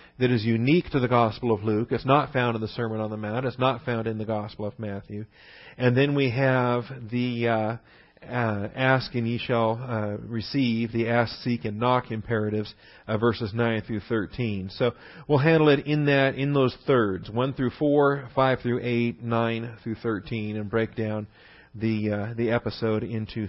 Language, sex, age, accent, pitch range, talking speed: English, male, 40-59, American, 110-130 Hz, 190 wpm